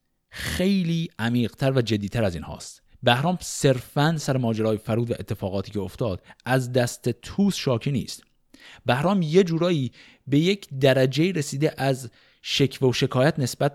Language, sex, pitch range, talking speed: Persian, male, 110-150 Hz, 145 wpm